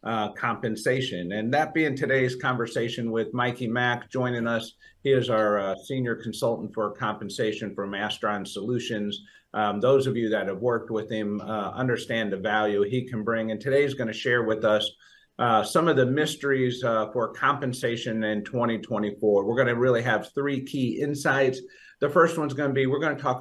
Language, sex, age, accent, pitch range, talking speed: English, male, 50-69, American, 110-135 Hz, 190 wpm